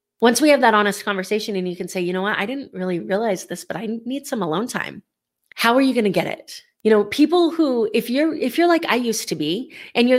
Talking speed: 270 wpm